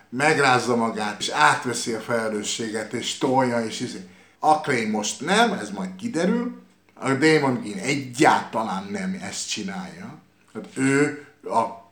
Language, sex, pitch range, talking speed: Hungarian, male, 125-185 Hz, 135 wpm